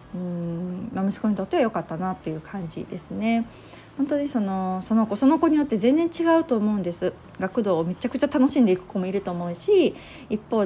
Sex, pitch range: female, 185-255 Hz